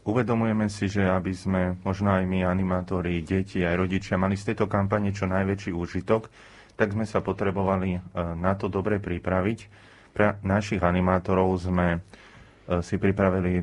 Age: 30-49